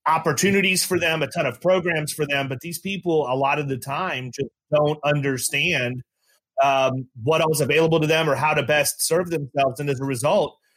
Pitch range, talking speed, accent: 130-160 Hz, 200 wpm, American